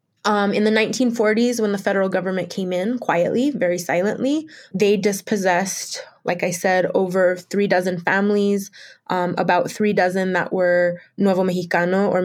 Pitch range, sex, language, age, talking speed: 180-205 Hz, female, English, 20-39, 150 wpm